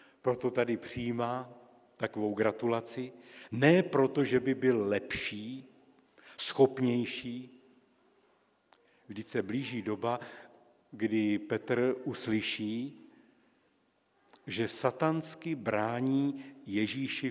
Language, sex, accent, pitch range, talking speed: Czech, male, native, 110-135 Hz, 80 wpm